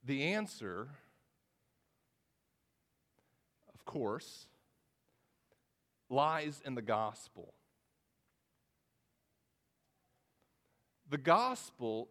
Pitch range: 155-215 Hz